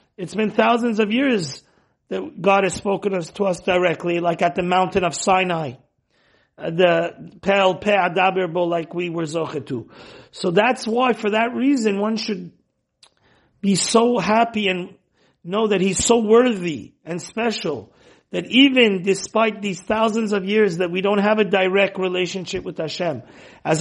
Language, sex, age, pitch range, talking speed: English, male, 40-59, 180-220 Hz, 155 wpm